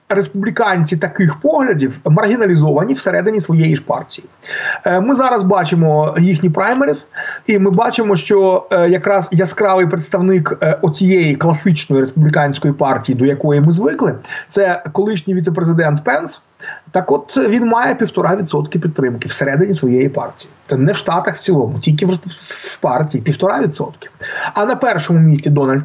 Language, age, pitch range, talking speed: Ukrainian, 30-49, 150-200 Hz, 135 wpm